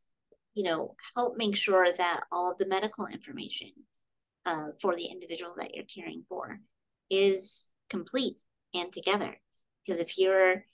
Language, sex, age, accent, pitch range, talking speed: English, female, 40-59, American, 165-205 Hz, 145 wpm